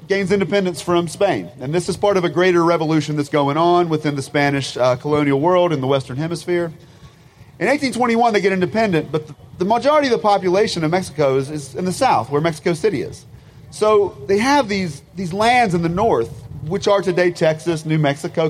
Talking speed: 205 wpm